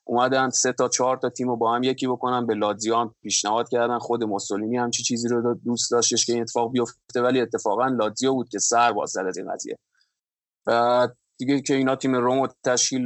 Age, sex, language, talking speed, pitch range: 20-39, male, Persian, 205 wpm, 115-130 Hz